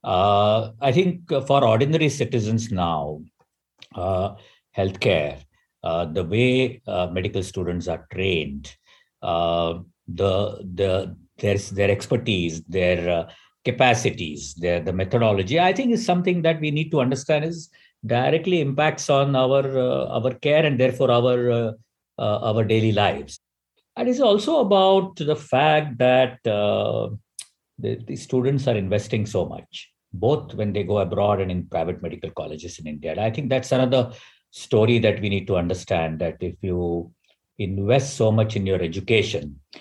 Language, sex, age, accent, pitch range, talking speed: English, male, 50-69, Indian, 90-130 Hz, 150 wpm